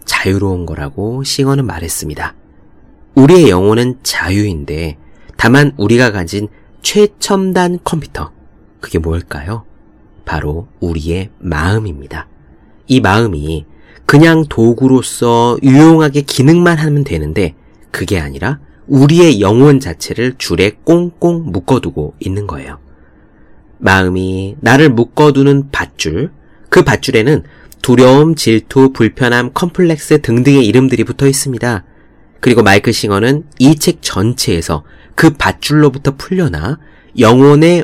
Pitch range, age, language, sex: 95-145 Hz, 40-59, Korean, male